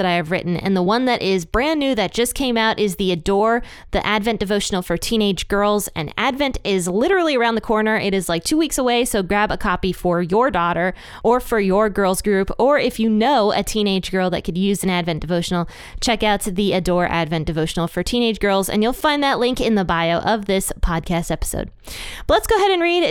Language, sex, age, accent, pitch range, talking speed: English, female, 20-39, American, 185-235 Hz, 230 wpm